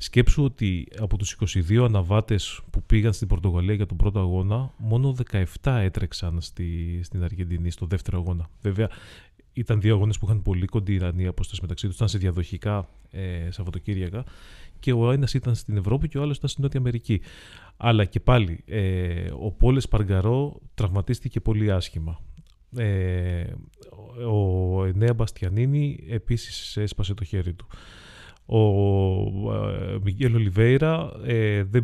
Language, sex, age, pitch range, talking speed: Greek, male, 30-49, 95-115 Hz, 155 wpm